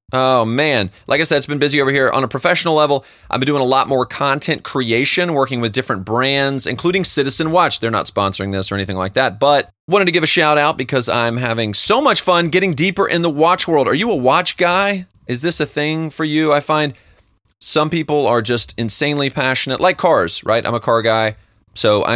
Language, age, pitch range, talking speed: English, 30-49, 110-150 Hz, 225 wpm